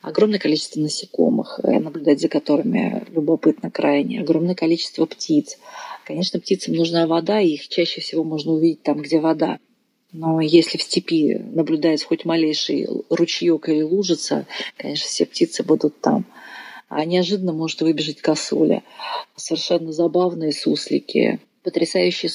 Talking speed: 130 wpm